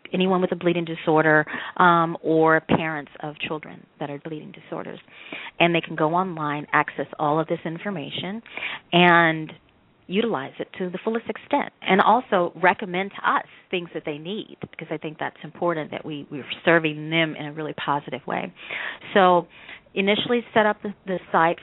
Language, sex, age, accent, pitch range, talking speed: English, female, 40-59, American, 155-185 Hz, 170 wpm